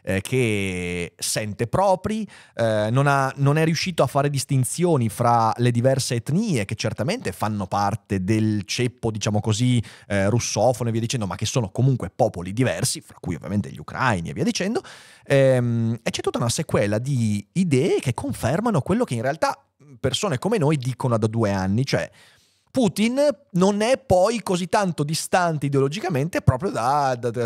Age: 30-49